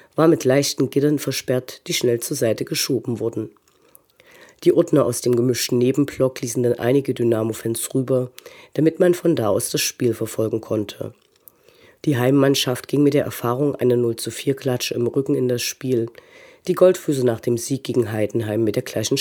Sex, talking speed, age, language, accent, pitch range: female, 170 wpm, 40-59, German, German, 115-145 Hz